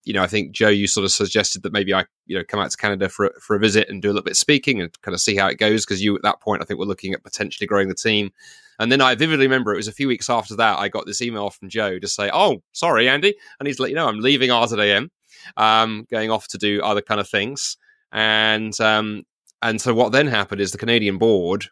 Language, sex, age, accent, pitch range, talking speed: English, male, 30-49, British, 100-115 Hz, 295 wpm